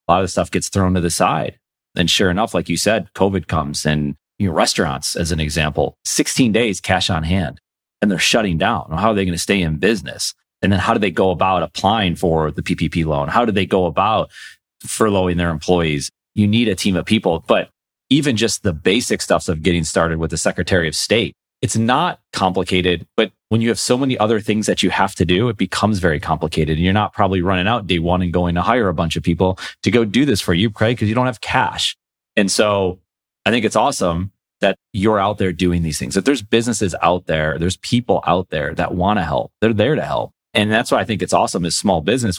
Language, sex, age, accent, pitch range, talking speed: English, male, 30-49, American, 85-105 Hz, 240 wpm